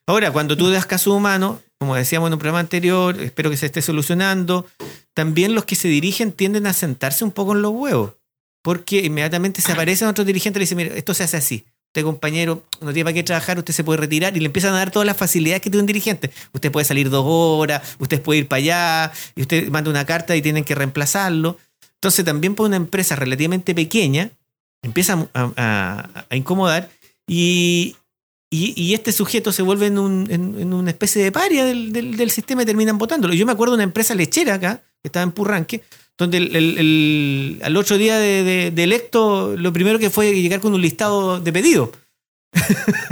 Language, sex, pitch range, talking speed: English, male, 160-205 Hz, 215 wpm